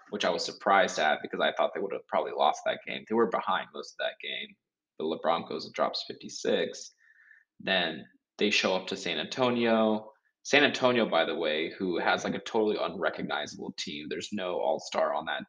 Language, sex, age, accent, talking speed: English, male, 20-39, American, 200 wpm